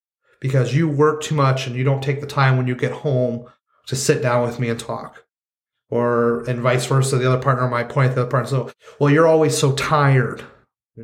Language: English